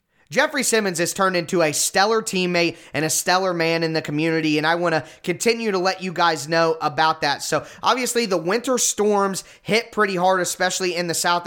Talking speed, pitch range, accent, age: 205 wpm, 170-200 Hz, American, 20-39